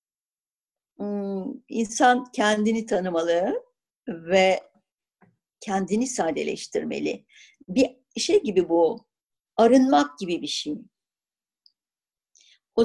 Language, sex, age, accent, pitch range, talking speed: Turkish, female, 60-79, native, 195-260 Hz, 70 wpm